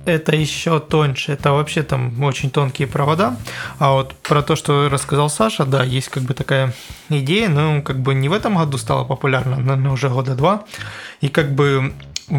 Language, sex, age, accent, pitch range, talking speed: Russian, male, 20-39, native, 130-155 Hz, 190 wpm